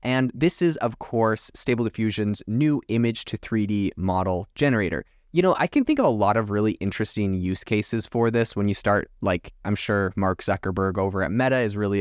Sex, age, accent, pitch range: male, 20-39, American, 95-115 Hz